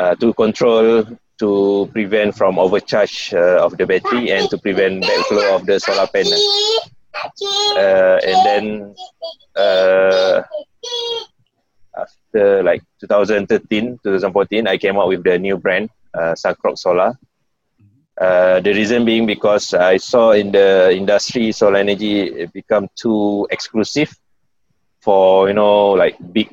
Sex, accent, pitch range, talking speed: male, Malaysian, 95-140 Hz, 130 wpm